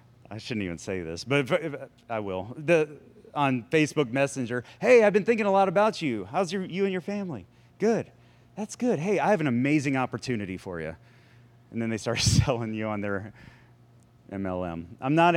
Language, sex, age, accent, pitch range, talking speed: English, male, 30-49, American, 120-180 Hz, 195 wpm